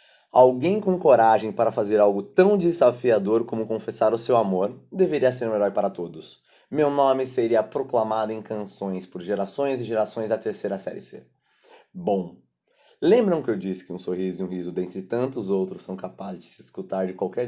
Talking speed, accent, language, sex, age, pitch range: 185 wpm, Brazilian, Portuguese, male, 20-39, 95-120 Hz